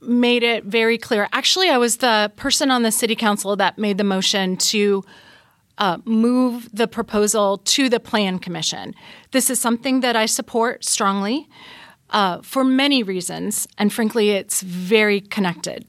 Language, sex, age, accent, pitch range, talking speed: English, female, 30-49, American, 200-240 Hz, 160 wpm